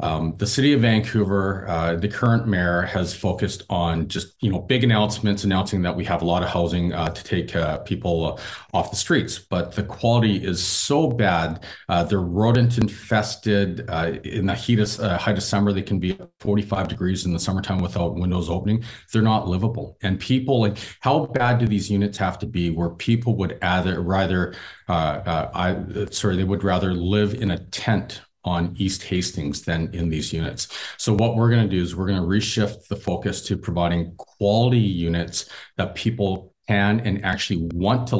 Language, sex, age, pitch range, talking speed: English, male, 40-59, 85-105 Hz, 195 wpm